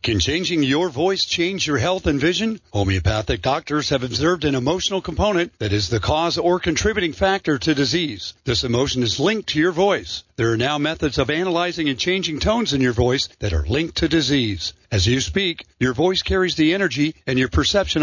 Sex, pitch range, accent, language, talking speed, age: male, 125-180 Hz, American, English, 200 wpm, 50-69